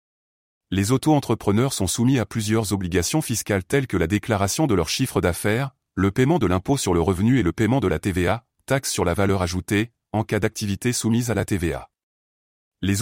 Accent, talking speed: French, 195 wpm